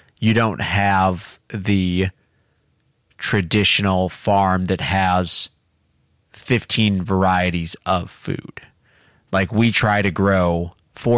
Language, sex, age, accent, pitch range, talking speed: English, male, 30-49, American, 90-110 Hz, 95 wpm